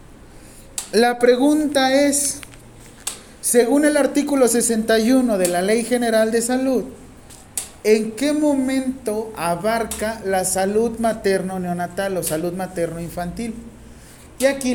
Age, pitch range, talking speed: 40-59, 185-245 Hz, 110 wpm